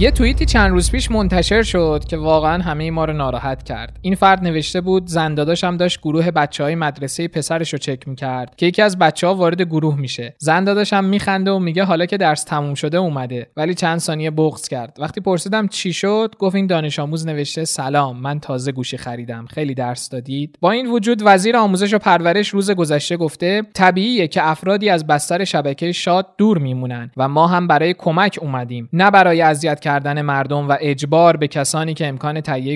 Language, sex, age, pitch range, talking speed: Persian, male, 20-39, 145-185 Hz, 190 wpm